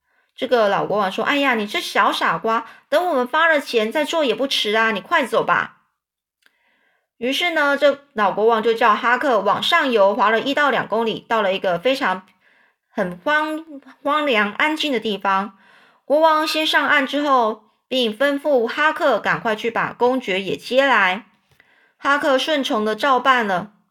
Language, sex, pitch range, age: Chinese, female, 210-275 Hz, 20-39